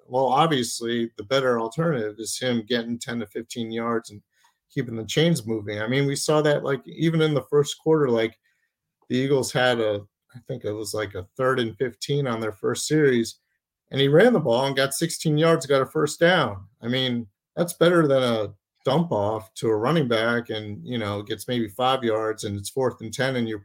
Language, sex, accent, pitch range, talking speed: English, male, American, 110-140 Hz, 215 wpm